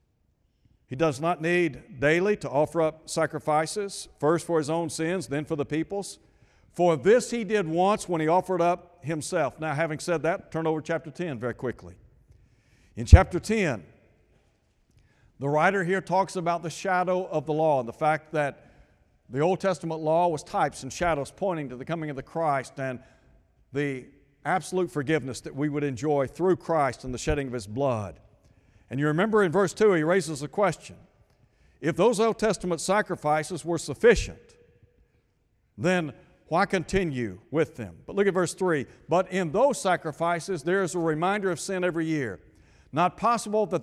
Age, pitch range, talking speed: 60-79, 140-185 Hz, 175 wpm